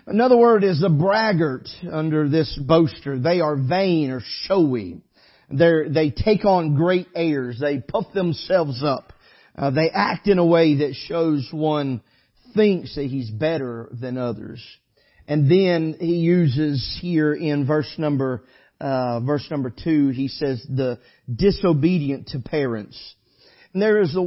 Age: 40-59